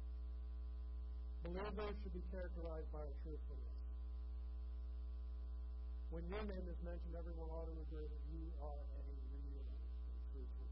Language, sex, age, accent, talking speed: English, male, 50-69, American, 130 wpm